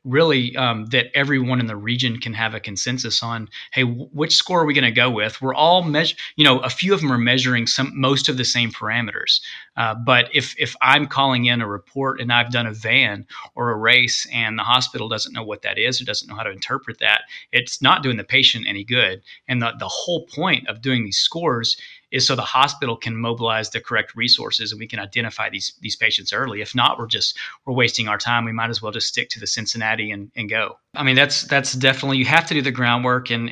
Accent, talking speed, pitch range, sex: American, 240 wpm, 115-130 Hz, male